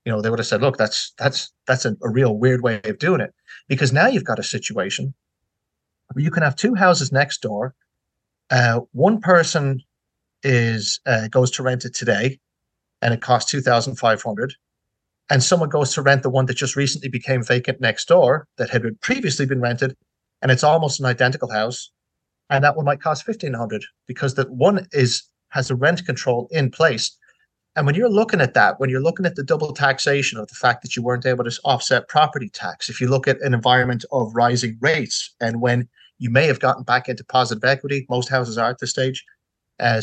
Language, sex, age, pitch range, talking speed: English, male, 40-59, 120-140 Hz, 205 wpm